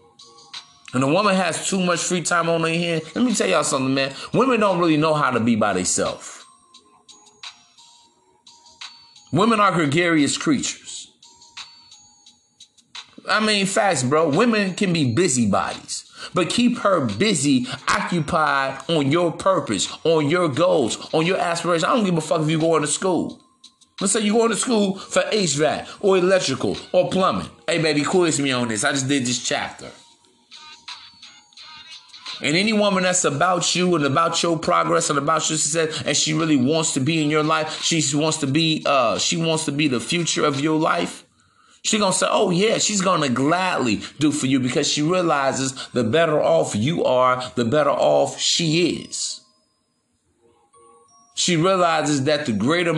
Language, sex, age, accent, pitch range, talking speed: English, male, 30-49, American, 150-190 Hz, 175 wpm